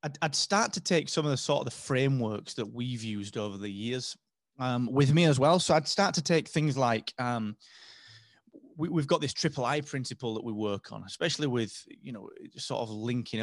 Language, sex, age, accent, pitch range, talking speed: English, male, 30-49, British, 105-145 Hz, 215 wpm